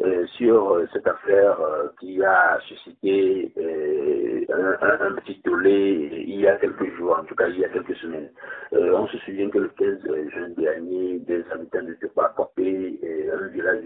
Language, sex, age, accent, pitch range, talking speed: French, male, 50-69, French, 335-430 Hz, 195 wpm